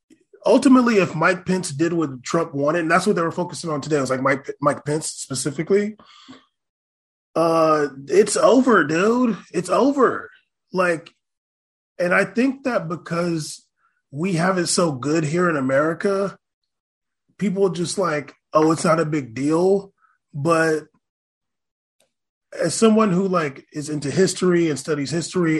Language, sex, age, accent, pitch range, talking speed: English, male, 20-39, American, 155-200 Hz, 150 wpm